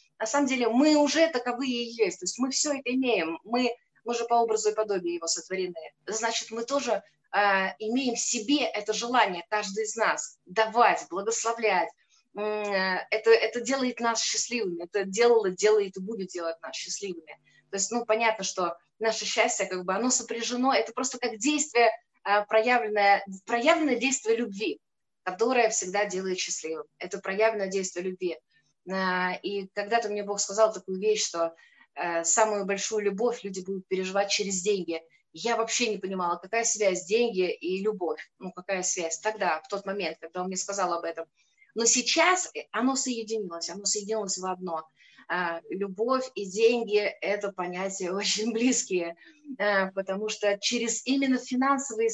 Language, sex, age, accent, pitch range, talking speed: Russian, female, 20-39, native, 190-235 Hz, 155 wpm